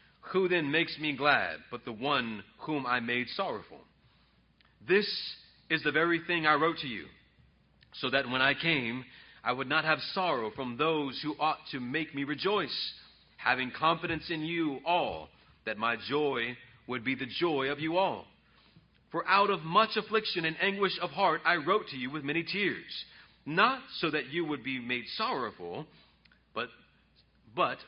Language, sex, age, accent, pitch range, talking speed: English, male, 40-59, American, 125-170 Hz, 170 wpm